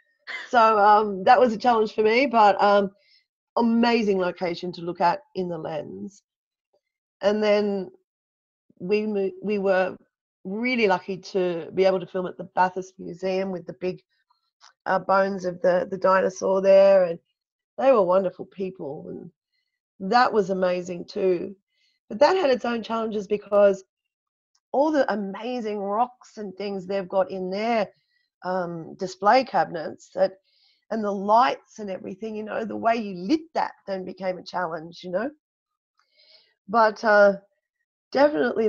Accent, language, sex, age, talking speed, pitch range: Australian, English, female, 30-49, 150 wpm, 185-230 Hz